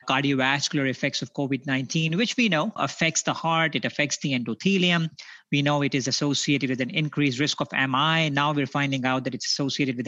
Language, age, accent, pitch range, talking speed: English, 30-49, Indian, 130-160 Hz, 195 wpm